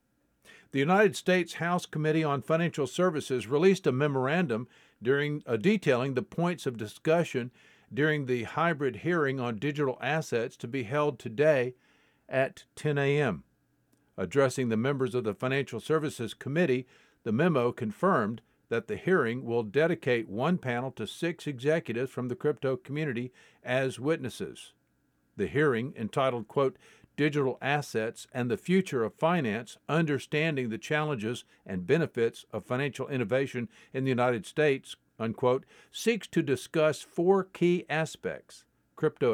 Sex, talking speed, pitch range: male, 135 wpm, 125-155 Hz